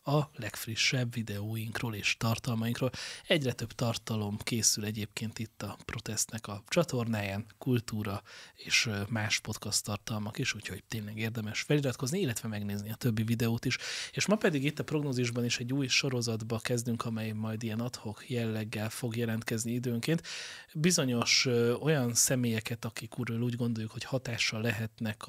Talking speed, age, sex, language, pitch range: 140 wpm, 30-49, male, Hungarian, 110-125 Hz